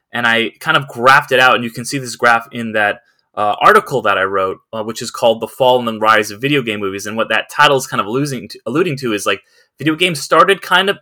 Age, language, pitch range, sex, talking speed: 20-39, English, 110-140 Hz, male, 280 wpm